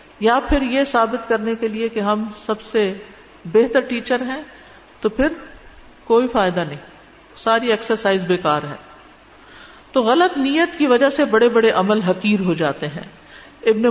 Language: Urdu